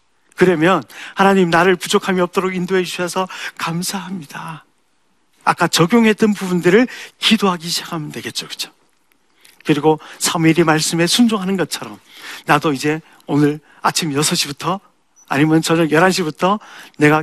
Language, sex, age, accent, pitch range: Korean, male, 40-59, native, 155-190 Hz